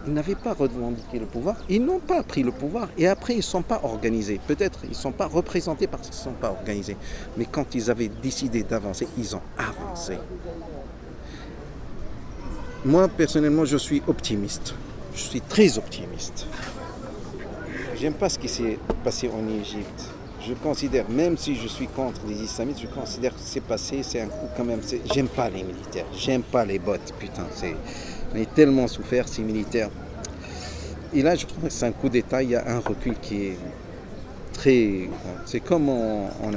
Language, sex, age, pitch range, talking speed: French, male, 50-69, 100-135 Hz, 185 wpm